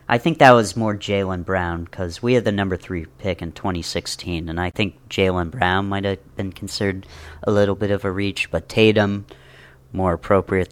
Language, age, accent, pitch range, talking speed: English, 40-59, American, 85-105 Hz, 195 wpm